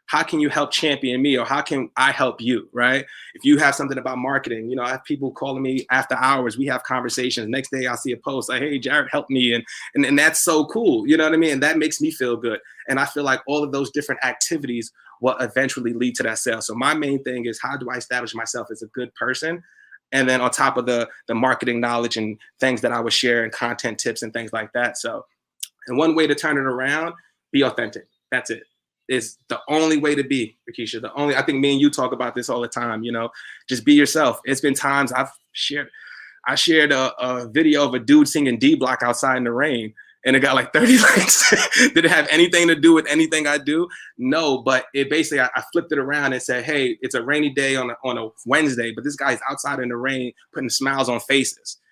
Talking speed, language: 250 wpm, English